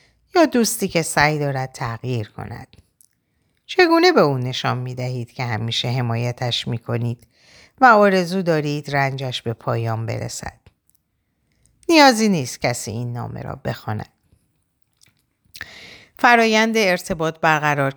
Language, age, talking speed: Persian, 50-69, 115 wpm